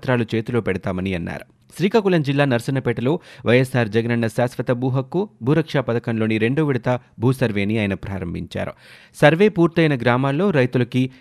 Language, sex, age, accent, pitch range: Telugu, male, 30-49, native, 115-150 Hz